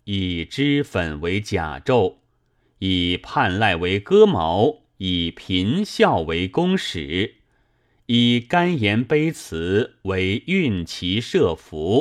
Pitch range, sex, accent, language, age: 95-130 Hz, male, native, Chinese, 30-49